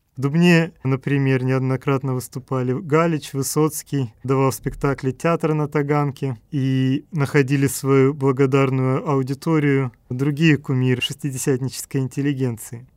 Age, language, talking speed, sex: 30-49, Russian, 95 wpm, male